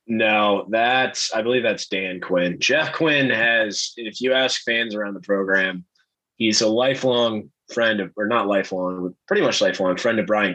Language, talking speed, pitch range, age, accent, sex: English, 175 wpm, 100-130 Hz, 20-39, American, male